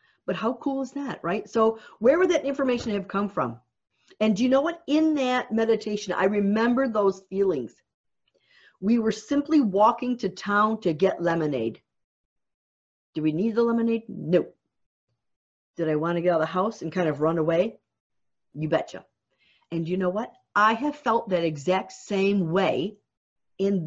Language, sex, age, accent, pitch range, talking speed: English, female, 50-69, American, 170-250 Hz, 175 wpm